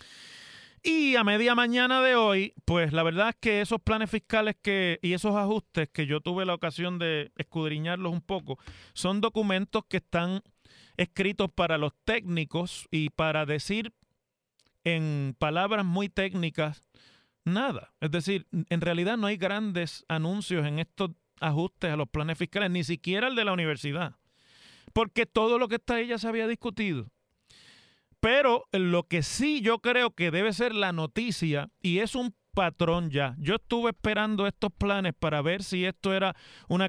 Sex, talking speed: male, 165 wpm